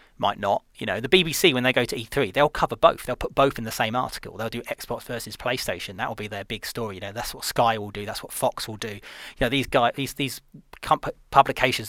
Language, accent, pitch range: English, British, 105-135 Hz